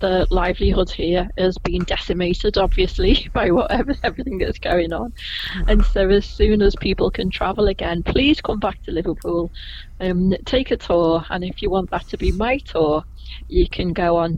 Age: 30-49